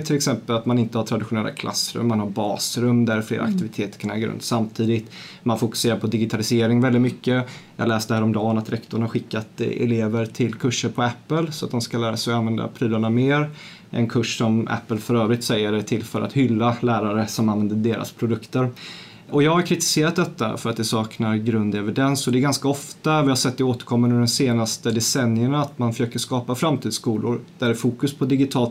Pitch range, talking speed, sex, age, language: 110-135 Hz, 200 wpm, male, 30-49, Swedish